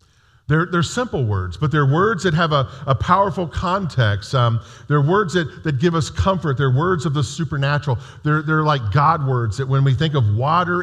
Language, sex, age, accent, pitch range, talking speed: English, male, 50-69, American, 115-165 Hz, 205 wpm